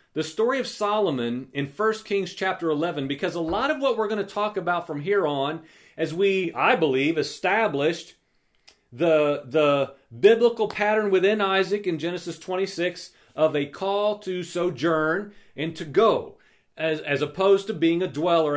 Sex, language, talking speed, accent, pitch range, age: male, English, 165 wpm, American, 165-215 Hz, 40-59